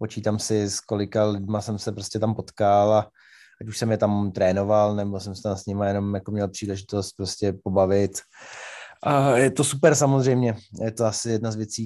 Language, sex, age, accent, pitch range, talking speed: Czech, male, 20-39, native, 105-130 Hz, 200 wpm